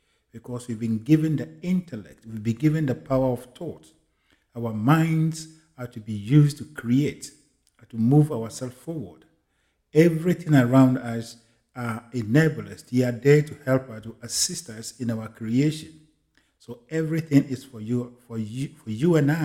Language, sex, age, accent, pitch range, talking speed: English, male, 50-69, Nigerian, 120-145 Hz, 165 wpm